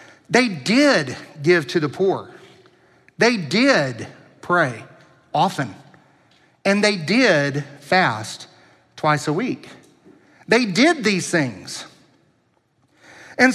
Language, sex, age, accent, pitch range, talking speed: English, male, 40-59, American, 175-255 Hz, 95 wpm